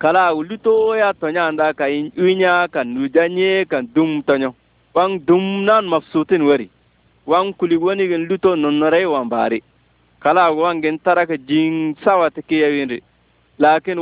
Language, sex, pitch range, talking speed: Arabic, male, 140-185 Hz, 135 wpm